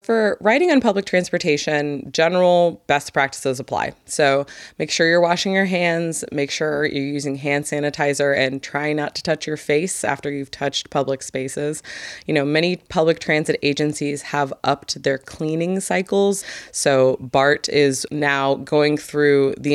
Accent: American